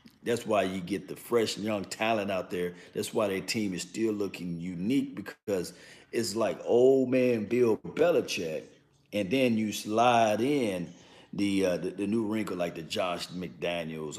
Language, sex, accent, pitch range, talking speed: English, male, American, 90-135 Hz, 170 wpm